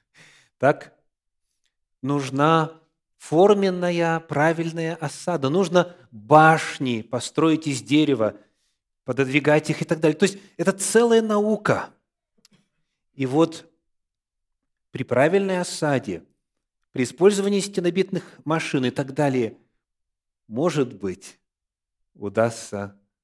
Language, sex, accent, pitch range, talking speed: Russian, male, native, 110-175 Hz, 90 wpm